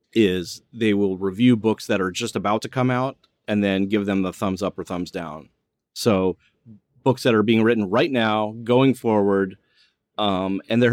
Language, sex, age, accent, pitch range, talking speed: English, male, 30-49, American, 100-130 Hz, 190 wpm